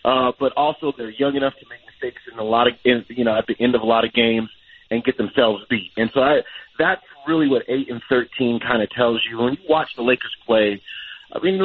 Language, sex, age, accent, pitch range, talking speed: English, male, 30-49, American, 110-135 Hz, 250 wpm